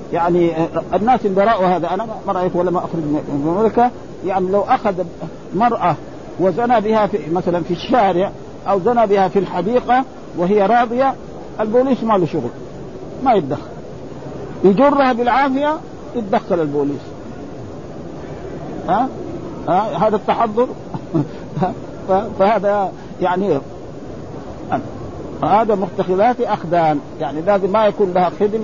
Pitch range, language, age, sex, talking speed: 175-225 Hz, Arabic, 50-69, male, 115 wpm